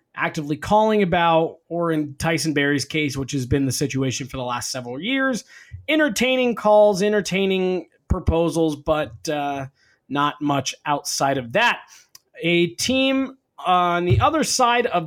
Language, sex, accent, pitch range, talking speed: English, male, American, 145-205 Hz, 145 wpm